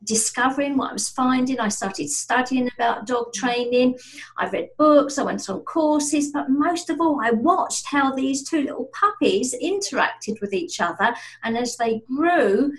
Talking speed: 175 wpm